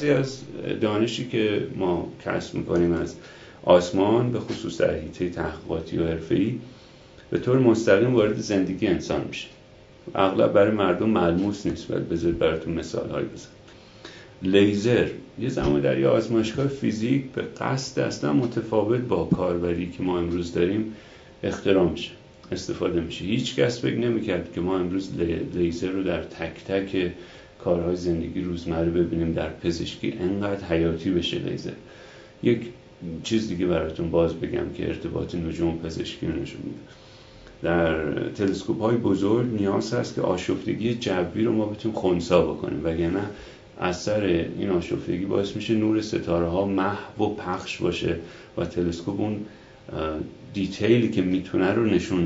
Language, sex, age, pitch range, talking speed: Persian, male, 40-59, 85-110 Hz, 140 wpm